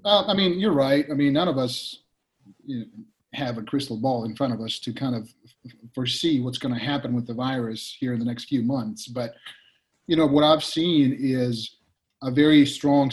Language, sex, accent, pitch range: English, male, American, 120-140 Hz